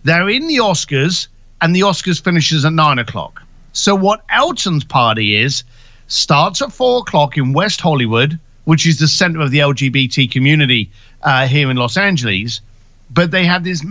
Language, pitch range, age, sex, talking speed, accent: English, 130-175 Hz, 50-69, male, 175 wpm, British